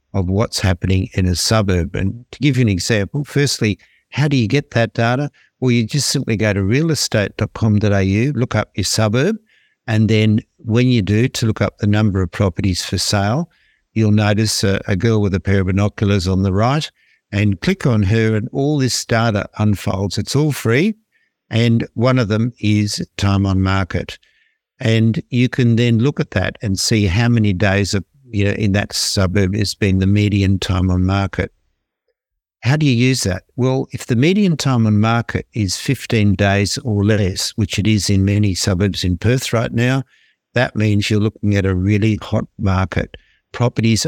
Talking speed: 190 wpm